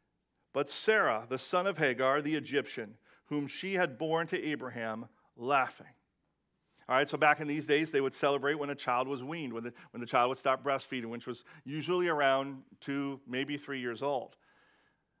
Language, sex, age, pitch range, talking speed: English, male, 40-59, 135-165 Hz, 185 wpm